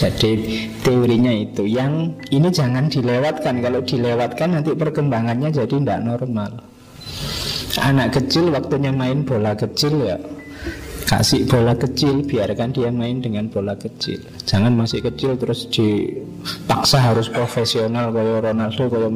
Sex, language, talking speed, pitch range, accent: male, Indonesian, 125 wpm, 115-150 Hz, native